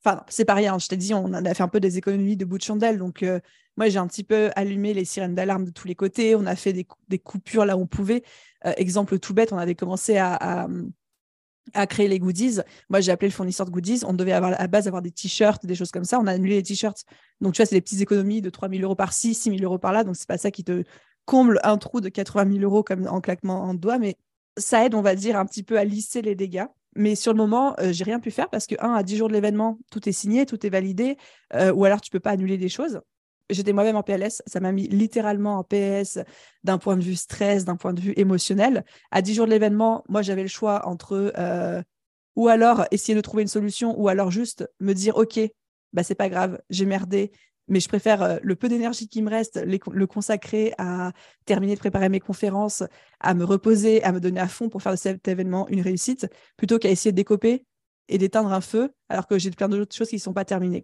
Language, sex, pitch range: French, female, 190-215 Hz